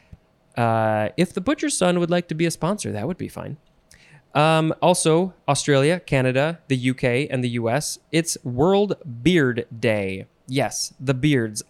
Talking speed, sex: 160 wpm, male